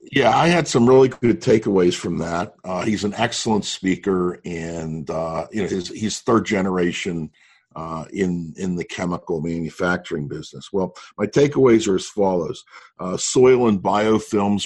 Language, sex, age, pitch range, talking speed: English, male, 50-69, 85-110 Hz, 160 wpm